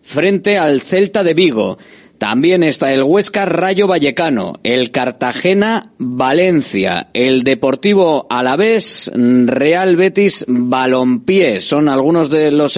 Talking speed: 115 wpm